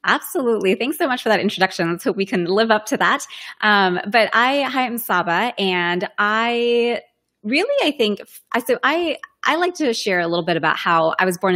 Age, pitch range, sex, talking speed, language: 20-39, 170-205 Hz, female, 215 wpm, English